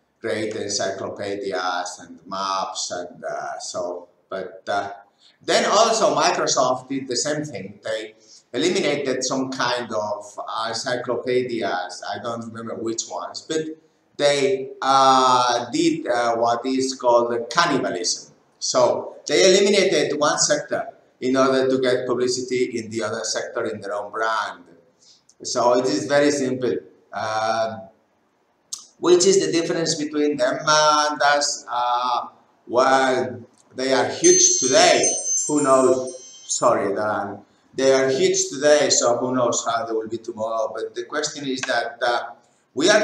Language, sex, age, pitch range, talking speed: English, male, 50-69, 120-145 Hz, 135 wpm